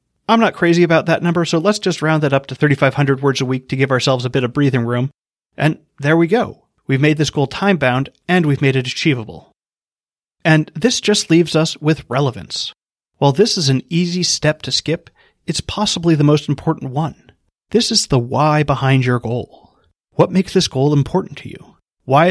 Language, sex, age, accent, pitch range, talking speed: English, male, 30-49, American, 135-170 Hz, 200 wpm